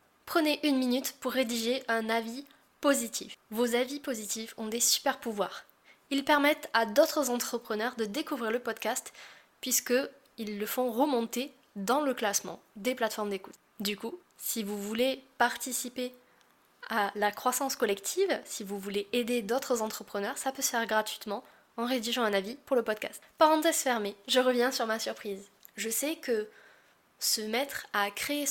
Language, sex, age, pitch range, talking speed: French, female, 10-29, 220-260 Hz, 160 wpm